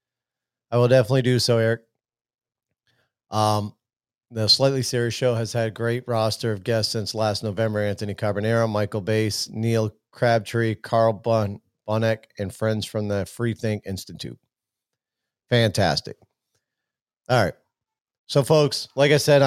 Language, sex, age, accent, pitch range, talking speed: English, male, 40-59, American, 110-130 Hz, 135 wpm